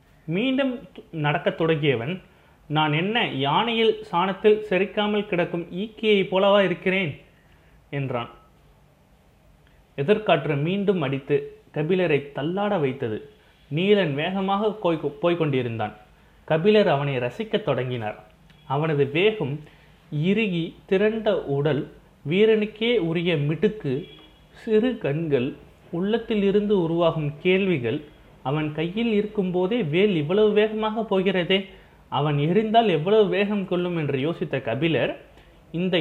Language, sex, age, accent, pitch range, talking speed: Tamil, male, 30-49, native, 145-205 Hz, 95 wpm